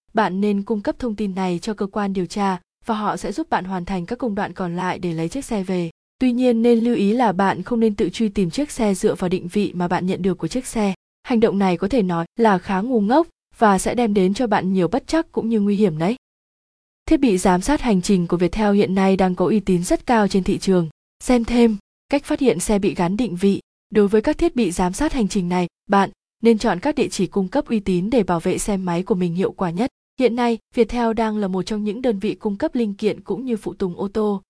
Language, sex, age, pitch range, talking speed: Vietnamese, female, 20-39, 190-235 Hz, 275 wpm